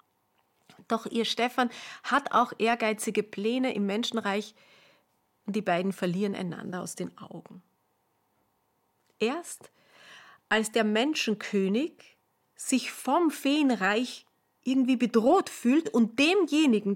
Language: German